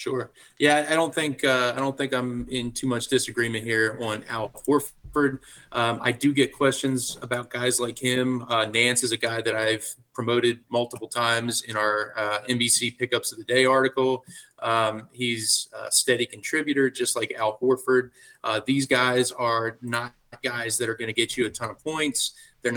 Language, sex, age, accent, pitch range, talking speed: English, male, 30-49, American, 115-130 Hz, 190 wpm